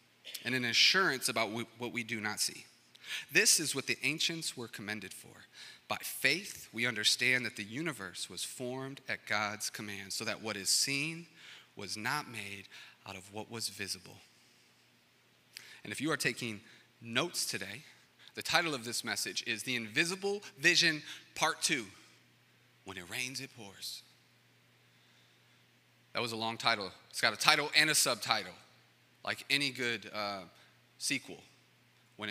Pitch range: 105-135 Hz